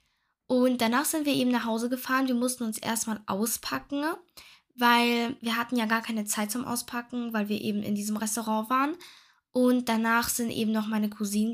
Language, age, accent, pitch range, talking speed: German, 10-29, German, 215-255 Hz, 185 wpm